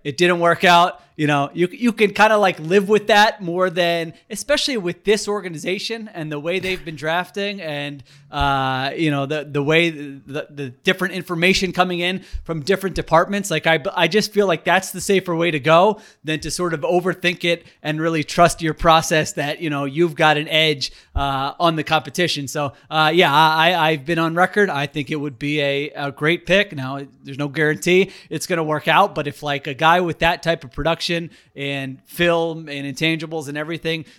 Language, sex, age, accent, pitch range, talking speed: English, male, 30-49, American, 150-180 Hz, 210 wpm